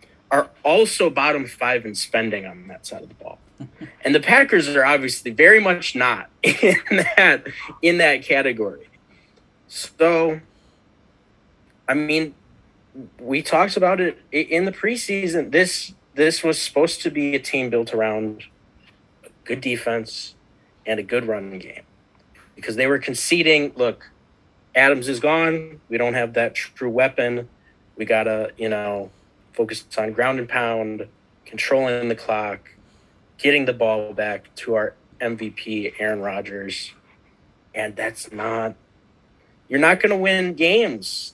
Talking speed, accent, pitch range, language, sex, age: 140 wpm, American, 110-155 Hz, English, male, 40-59